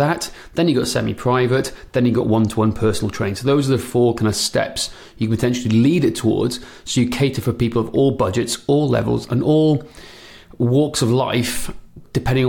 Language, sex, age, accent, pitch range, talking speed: English, male, 30-49, British, 110-140 Hz, 195 wpm